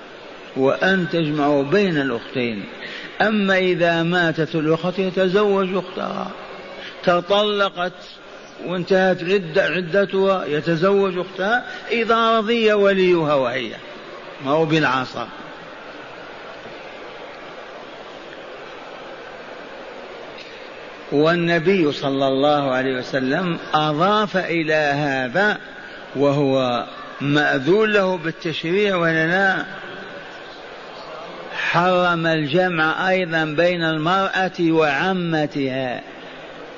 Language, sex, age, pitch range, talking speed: Arabic, male, 50-69, 150-190 Hz, 70 wpm